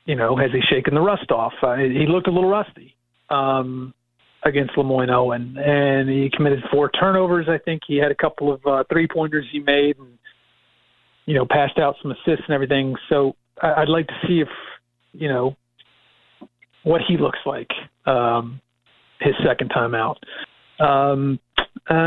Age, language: 40-59, English